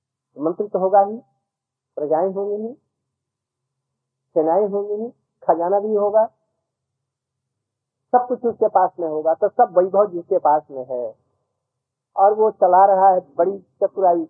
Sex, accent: male, native